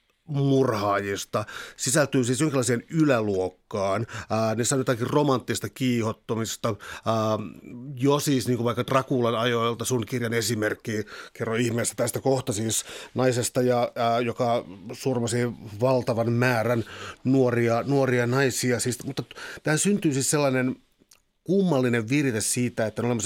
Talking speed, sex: 115 wpm, male